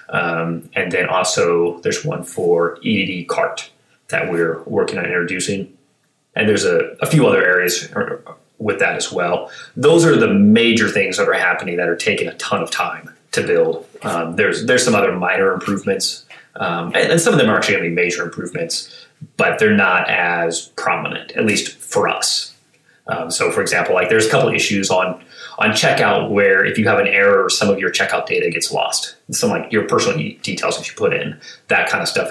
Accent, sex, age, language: American, male, 30-49, English